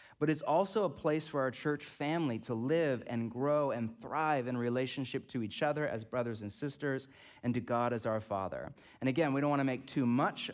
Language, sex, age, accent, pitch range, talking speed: English, male, 30-49, American, 120-155 Hz, 215 wpm